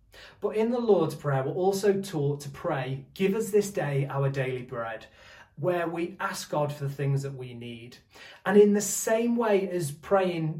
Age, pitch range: 20-39, 145-190 Hz